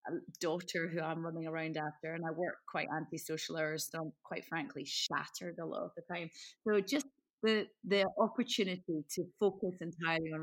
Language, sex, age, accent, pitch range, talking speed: English, female, 30-49, British, 165-220 Hz, 185 wpm